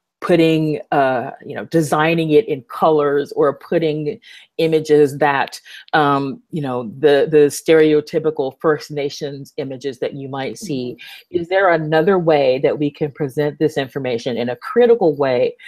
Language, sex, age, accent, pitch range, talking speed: English, female, 40-59, American, 140-165 Hz, 150 wpm